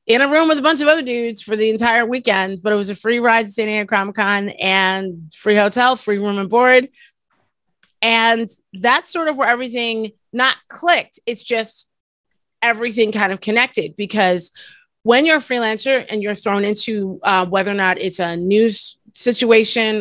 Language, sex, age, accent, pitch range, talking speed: English, female, 30-49, American, 205-265 Hz, 180 wpm